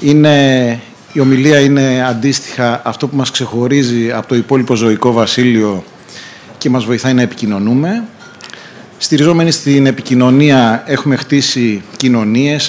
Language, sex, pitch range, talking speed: Greek, male, 125-155 Hz, 120 wpm